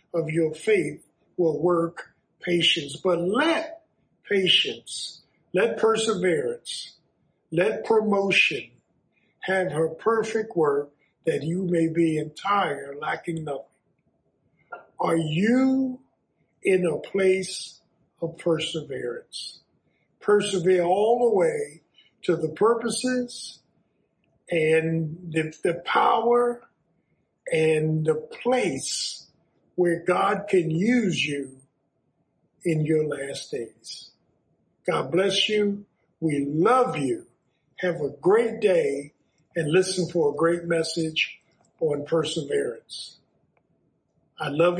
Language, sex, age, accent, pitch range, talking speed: English, male, 50-69, American, 160-215 Hz, 100 wpm